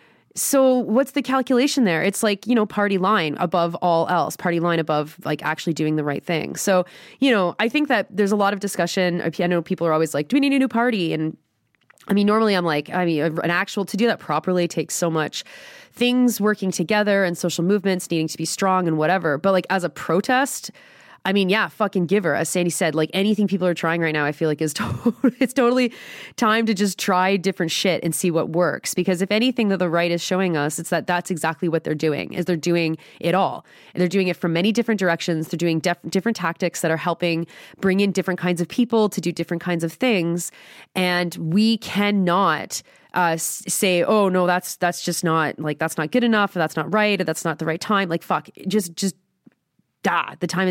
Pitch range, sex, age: 170-210 Hz, female, 20-39